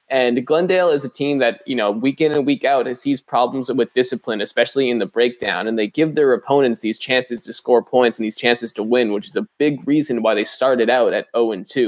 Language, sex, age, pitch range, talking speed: English, male, 20-39, 115-140 Hz, 255 wpm